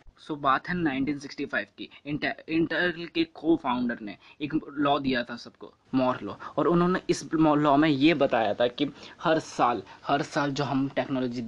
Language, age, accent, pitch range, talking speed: Hindi, 20-39, native, 125-150 Hz, 185 wpm